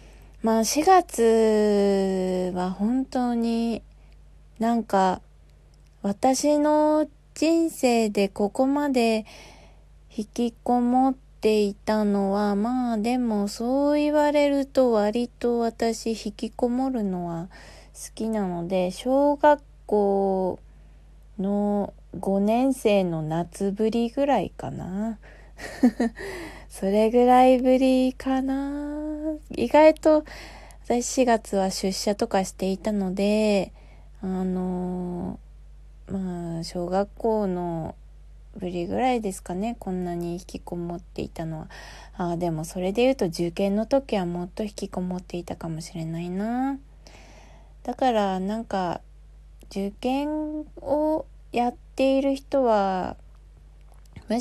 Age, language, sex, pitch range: 20-39, Japanese, female, 185-255 Hz